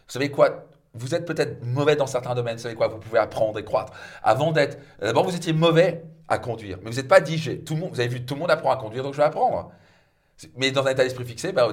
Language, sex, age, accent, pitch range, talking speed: French, male, 40-59, French, 120-170 Hz, 280 wpm